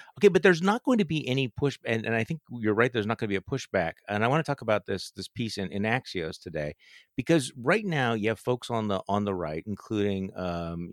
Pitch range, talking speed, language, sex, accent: 100-130 Hz, 265 wpm, English, male, American